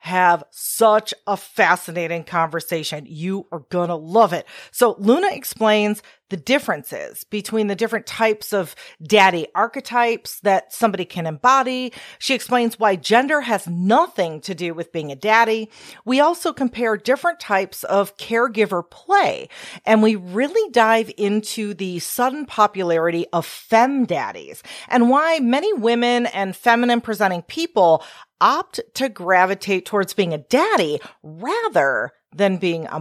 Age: 40-59